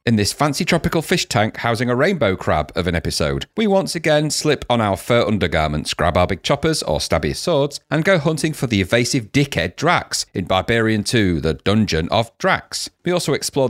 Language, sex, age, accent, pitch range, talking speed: English, male, 40-59, British, 105-150 Hz, 200 wpm